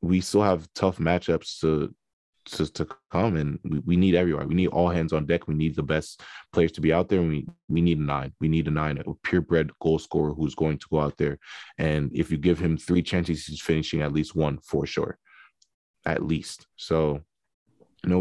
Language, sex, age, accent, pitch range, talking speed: English, male, 20-39, American, 80-100 Hz, 225 wpm